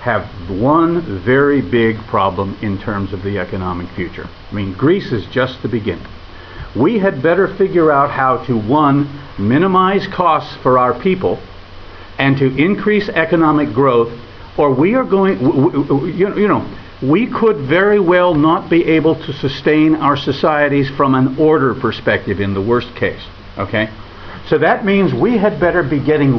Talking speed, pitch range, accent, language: 165 wpm, 115-160 Hz, American, Italian